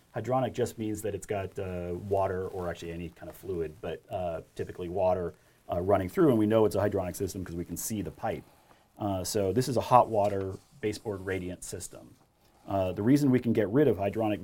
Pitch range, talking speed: 95-115 Hz, 220 wpm